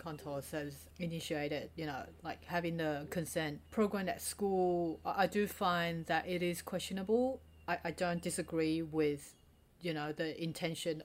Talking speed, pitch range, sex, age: 150 wpm, 160-185 Hz, female, 30-49